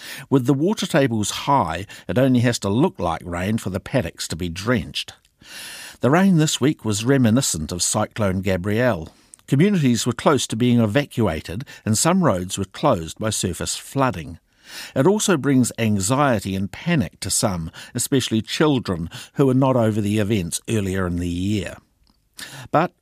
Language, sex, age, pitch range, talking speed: English, male, 60-79, 100-135 Hz, 160 wpm